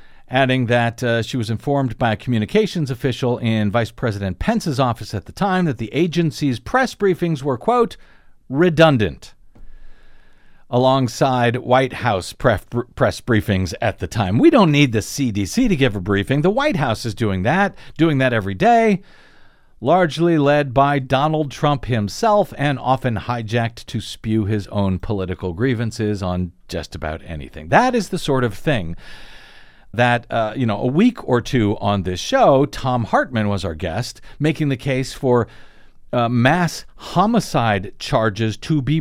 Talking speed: 160 wpm